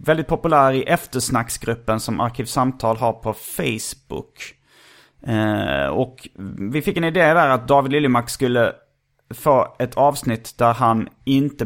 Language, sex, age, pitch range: Swedish, male, 30-49, 115-170 Hz